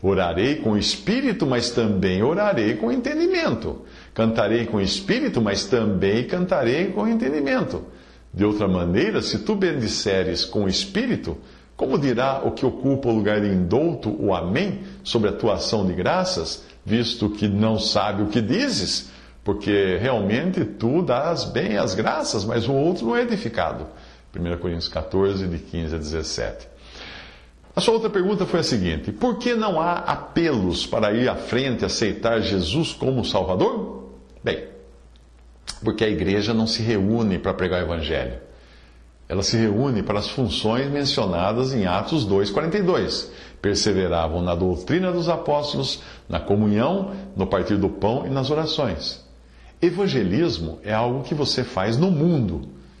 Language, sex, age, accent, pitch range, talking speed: English, male, 50-69, Brazilian, 85-140 Hz, 155 wpm